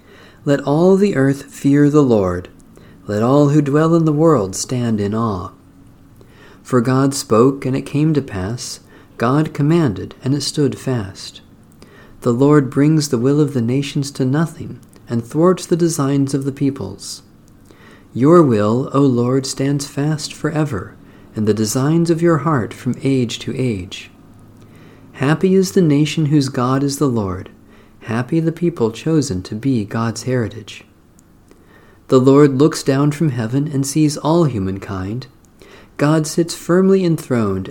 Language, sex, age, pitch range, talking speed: English, male, 50-69, 105-145 Hz, 155 wpm